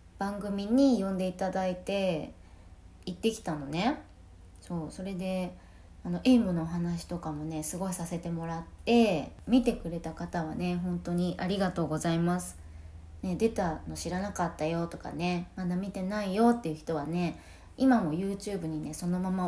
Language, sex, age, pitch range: Japanese, female, 20-39, 155-205 Hz